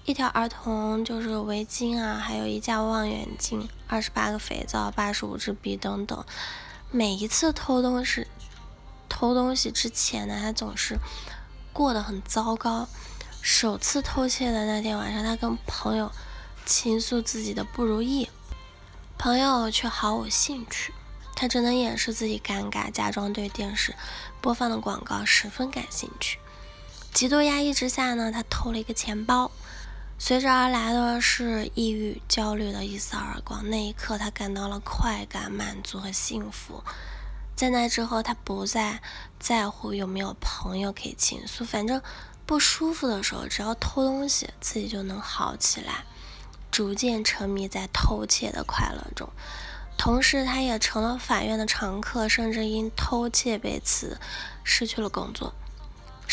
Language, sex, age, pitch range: Chinese, female, 10-29, 210-245 Hz